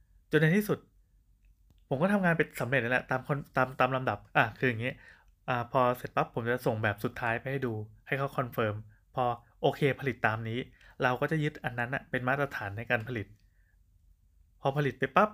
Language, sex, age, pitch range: Thai, male, 20-39, 115-140 Hz